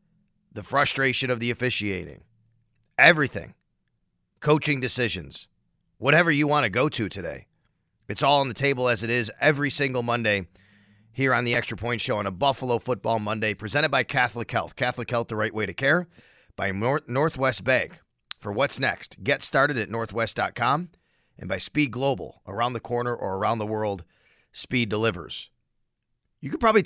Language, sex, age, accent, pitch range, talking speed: English, male, 30-49, American, 115-145 Hz, 170 wpm